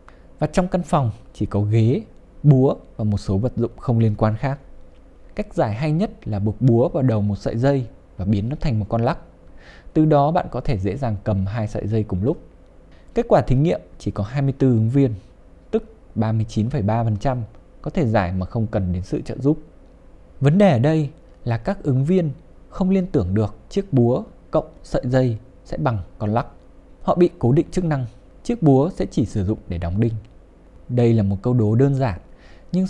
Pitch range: 105-145 Hz